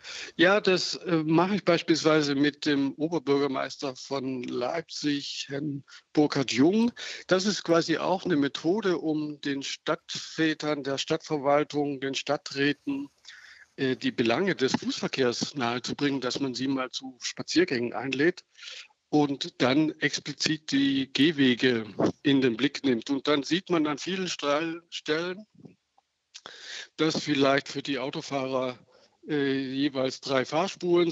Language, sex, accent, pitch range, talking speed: German, male, German, 135-165 Hz, 120 wpm